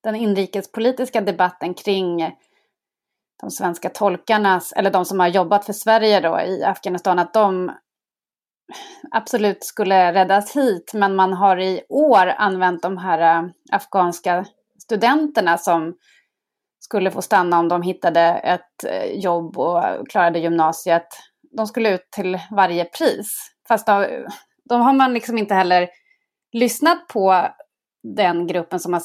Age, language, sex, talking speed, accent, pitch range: 30-49, Swedish, female, 130 wpm, native, 180-235 Hz